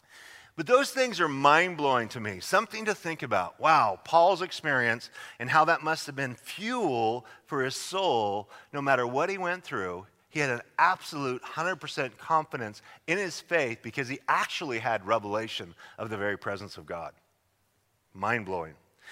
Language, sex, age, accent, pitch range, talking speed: English, male, 40-59, American, 125-170 Hz, 160 wpm